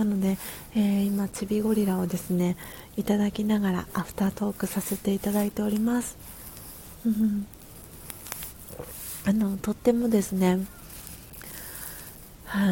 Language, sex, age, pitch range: Japanese, female, 40-59, 180-215 Hz